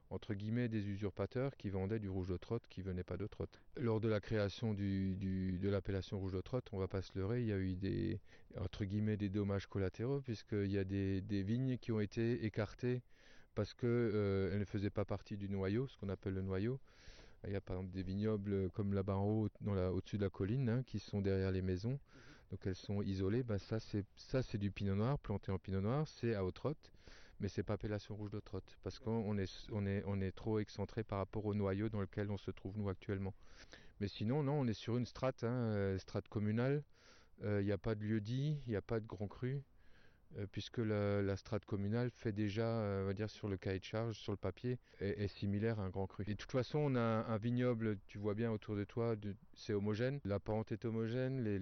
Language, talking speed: French, 250 wpm